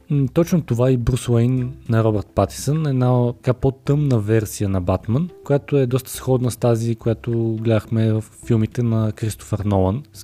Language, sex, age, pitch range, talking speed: Bulgarian, male, 20-39, 105-130 Hz, 165 wpm